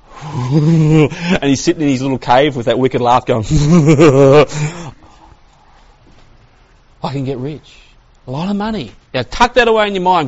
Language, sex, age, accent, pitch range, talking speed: English, male, 40-59, Australian, 130-200 Hz, 160 wpm